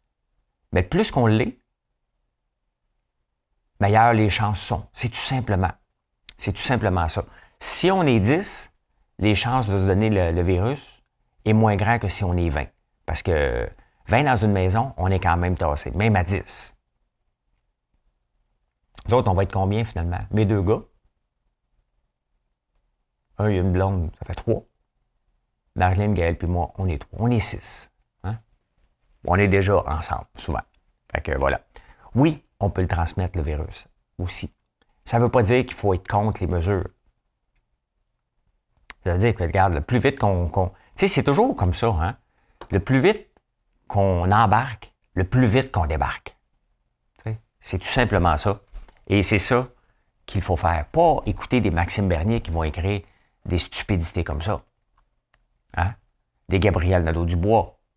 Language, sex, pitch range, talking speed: French, male, 90-115 Hz, 165 wpm